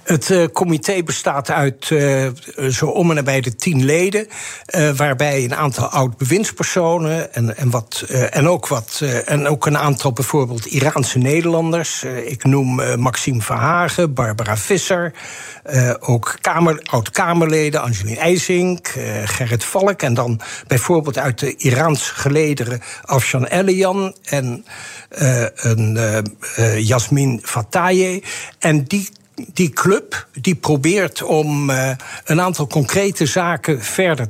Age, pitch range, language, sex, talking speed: 60-79, 130-170 Hz, Dutch, male, 135 wpm